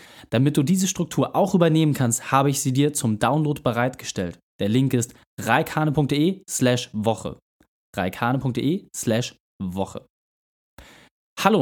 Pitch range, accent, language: 120-155 Hz, German, German